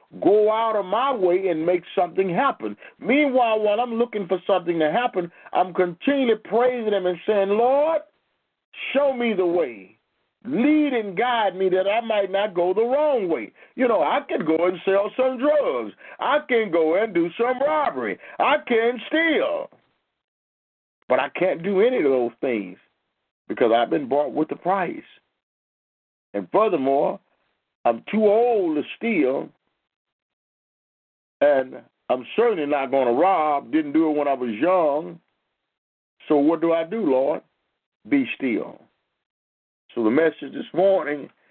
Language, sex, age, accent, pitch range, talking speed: English, male, 50-69, American, 175-245 Hz, 155 wpm